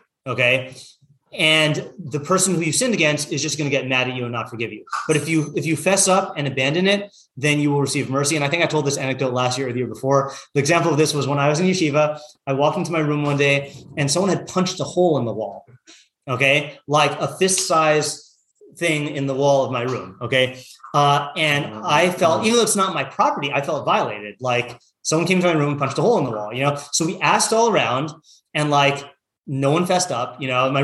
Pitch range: 140-170 Hz